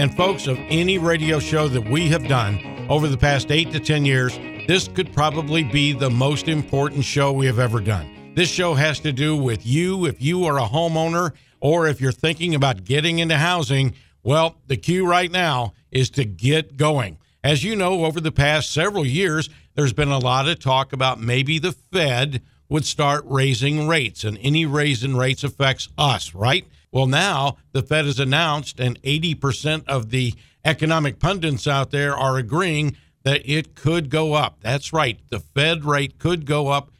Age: 50-69